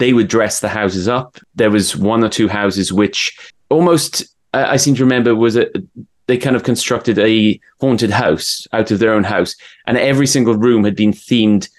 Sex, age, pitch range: male, 20-39, 100-120 Hz